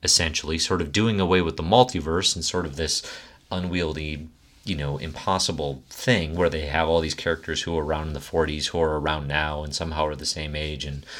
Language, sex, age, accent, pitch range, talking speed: English, male, 30-49, American, 75-90 Hz, 215 wpm